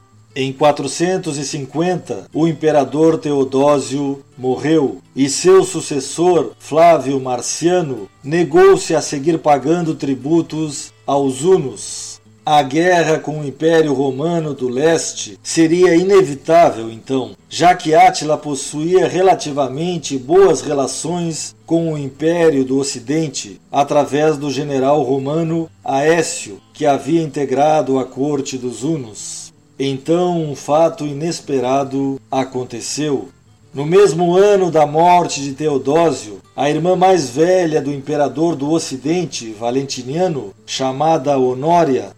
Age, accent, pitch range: 50-69, Brazilian, 135-165 Hz